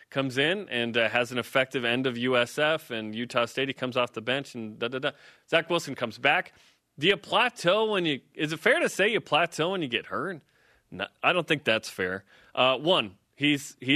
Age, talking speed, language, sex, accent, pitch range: 30-49, 215 wpm, English, male, American, 125-170 Hz